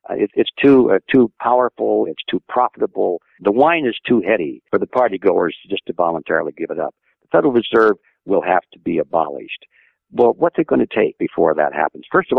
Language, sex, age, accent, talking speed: English, male, 60-79, American, 210 wpm